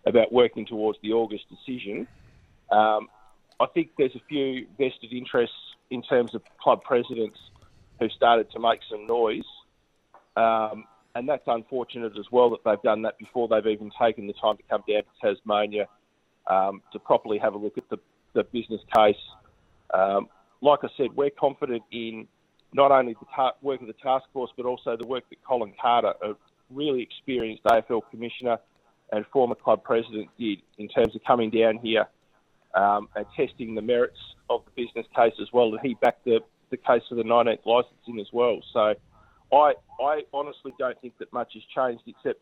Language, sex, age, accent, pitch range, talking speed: English, male, 40-59, Australian, 110-130 Hz, 180 wpm